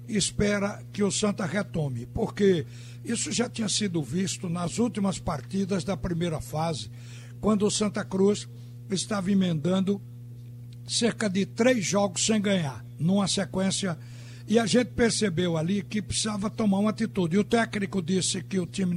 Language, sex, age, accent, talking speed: Portuguese, male, 60-79, Brazilian, 150 wpm